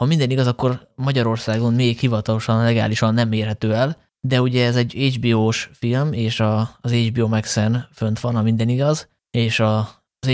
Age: 20-39